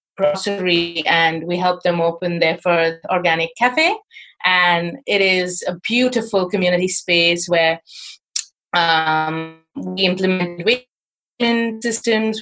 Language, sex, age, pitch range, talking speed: English, female, 30-49, 175-220 Hz, 105 wpm